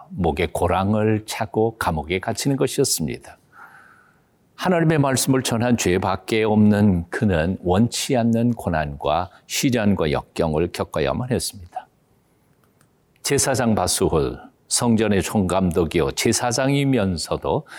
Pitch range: 95-135 Hz